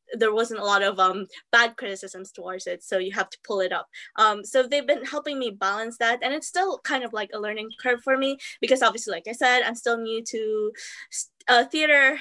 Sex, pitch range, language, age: female, 195-250 Hz, English, 10-29